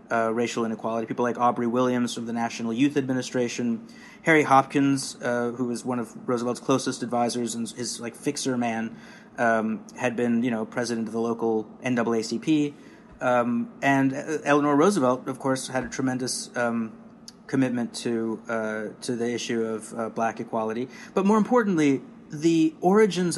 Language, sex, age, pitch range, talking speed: English, male, 30-49, 120-145 Hz, 160 wpm